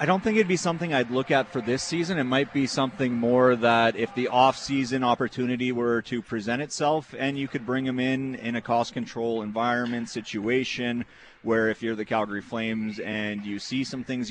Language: English